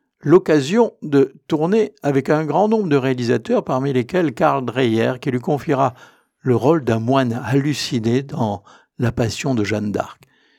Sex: male